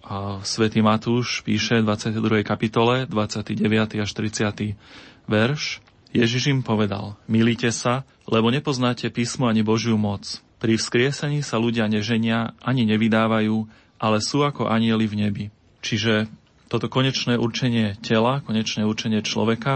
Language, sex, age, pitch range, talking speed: Slovak, male, 30-49, 110-120 Hz, 130 wpm